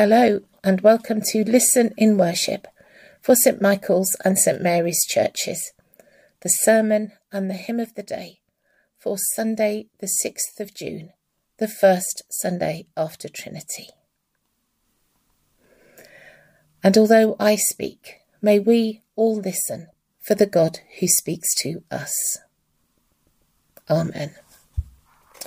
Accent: British